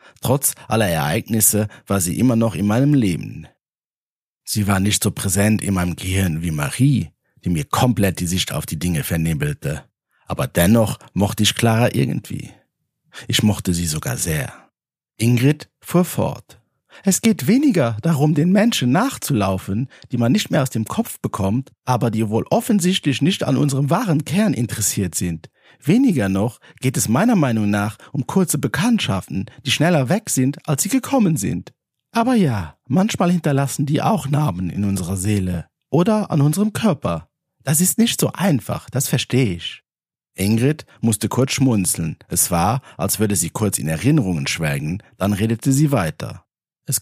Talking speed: 160 wpm